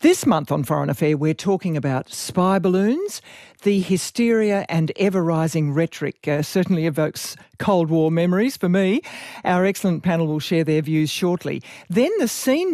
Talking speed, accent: 160 wpm, Australian